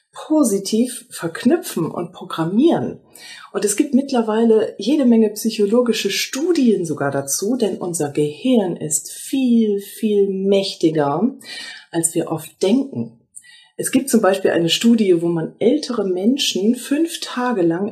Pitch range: 180-255 Hz